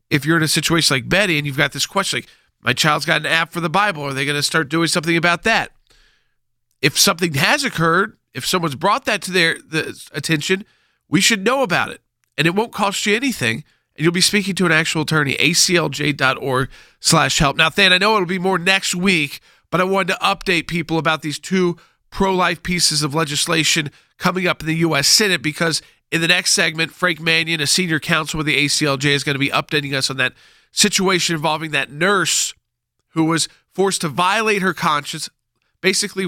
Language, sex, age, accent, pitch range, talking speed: English, male, 40-59, American, 145-180 Hz, 205 wpm